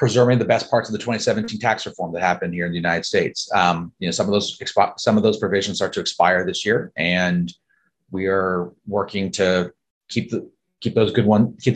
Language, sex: Spanish, male